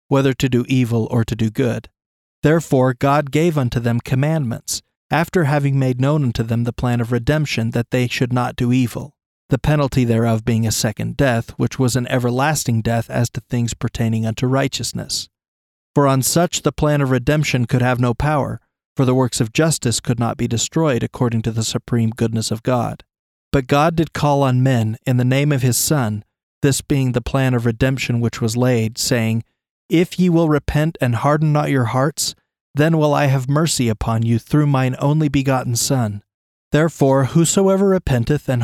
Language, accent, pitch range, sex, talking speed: English, American, 120-145 Hz, male, 190 wpm